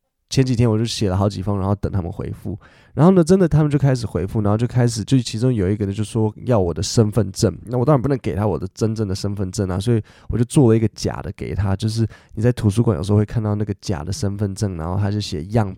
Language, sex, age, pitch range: Chinese, male, 20-39, 100-130 Hz